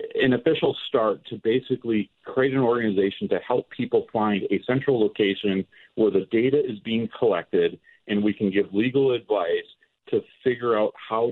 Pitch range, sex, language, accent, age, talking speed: 100-150 Hz, male, English, American, 40-59, 165 wpm